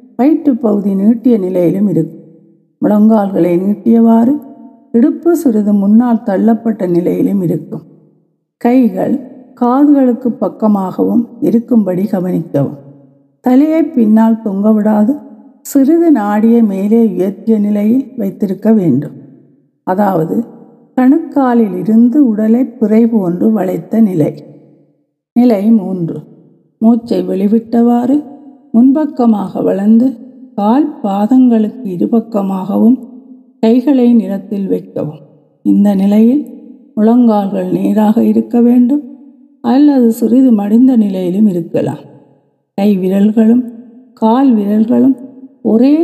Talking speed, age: 85 wpm, 50-69